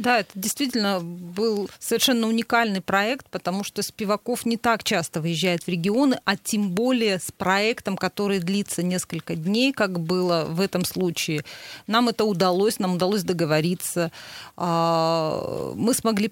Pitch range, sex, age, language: 175-210 Hz, female, 30-49, Russian